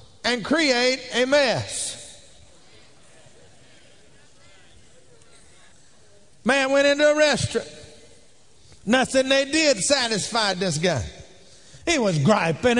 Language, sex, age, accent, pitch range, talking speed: English, male, 40-59, American, 210-260 Hz, 85 wpm